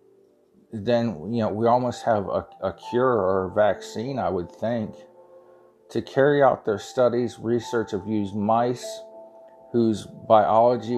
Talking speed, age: 140 wpm, 40-59